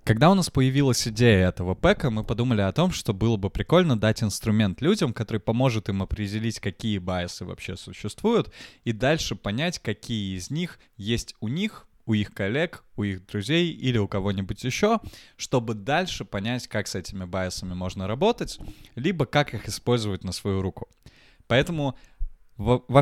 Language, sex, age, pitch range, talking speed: Russian, male, 20-39, 100-140 Hz, 165 wpm